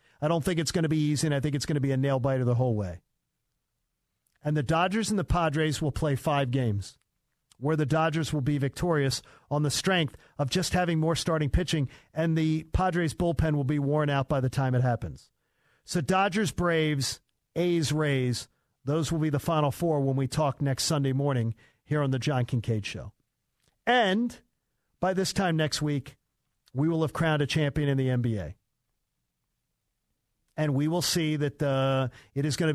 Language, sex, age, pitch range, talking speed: English, male, 50-69, 135-170 Hz, 195 wpm